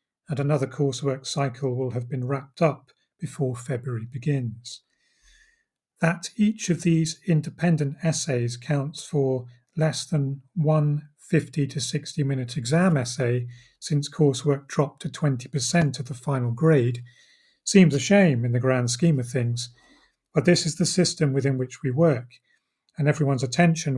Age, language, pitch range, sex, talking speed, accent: 40-59, English, 130-160 Hz, male, 150 wpm, British